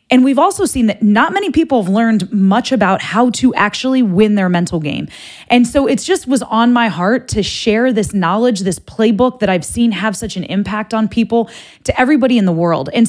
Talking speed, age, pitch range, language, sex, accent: 220 wpm, 20-39, 195-260 Hz, English, female, American